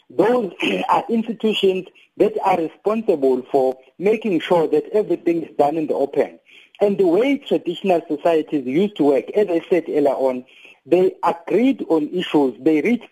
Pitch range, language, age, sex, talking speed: 155-215 Hz, English, 50-69, male, 160 wpm